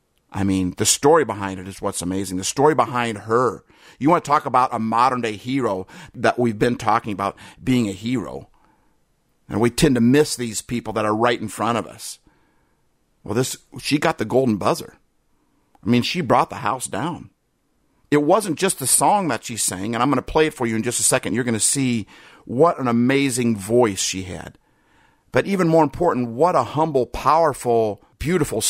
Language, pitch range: English, 115-155 Hz